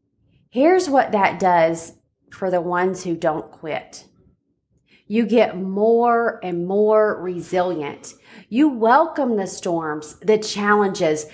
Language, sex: English, female